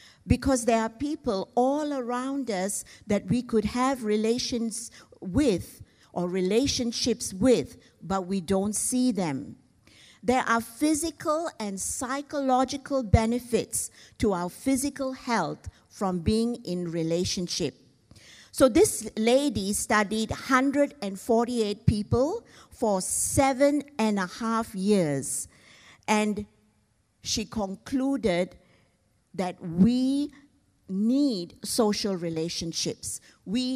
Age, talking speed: 50-69, 100 wpm